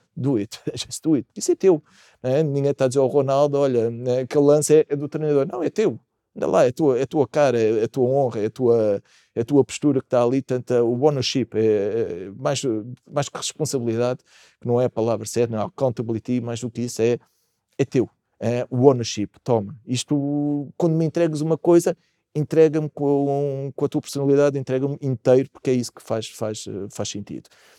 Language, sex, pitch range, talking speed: Portuguese, male, 110-140 Hz, 200 wpm